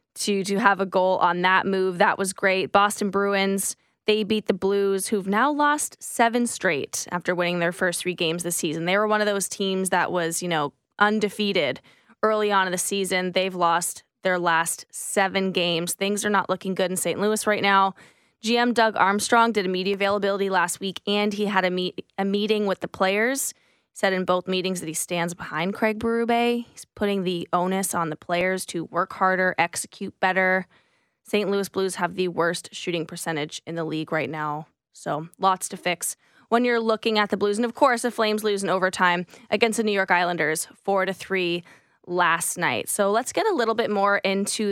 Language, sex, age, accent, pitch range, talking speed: English, female, 20-39, American, 180-210 Hz, 205 wpm